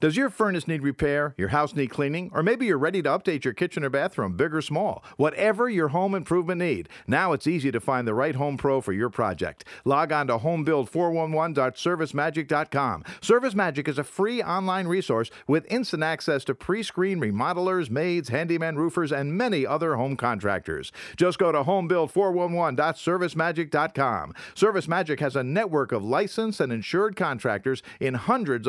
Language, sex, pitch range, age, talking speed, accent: English, male, 135-180 Hz, 50-69, 170 wpm, American